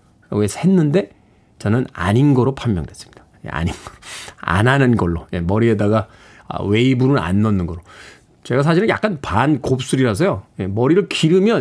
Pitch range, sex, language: 110-175 Hz, male, Korean